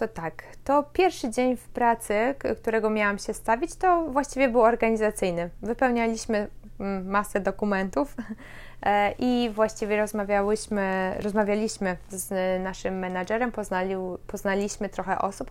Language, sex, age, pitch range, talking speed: Polish, female, 20-39, 195-230 Hz, 110 wpm